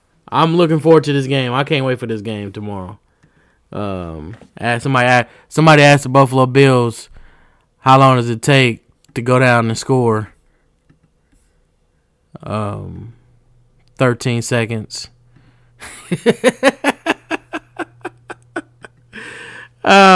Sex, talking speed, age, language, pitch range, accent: male, 100 wpm, 20-39, English, 115-145 Hz, American